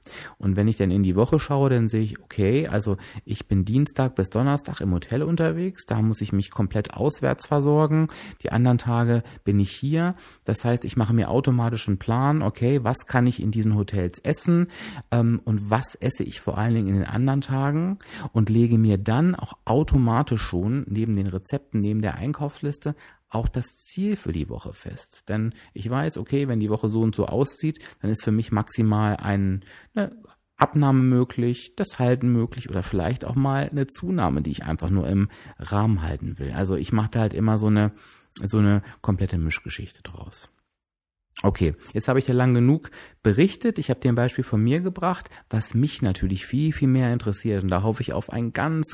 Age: 30-49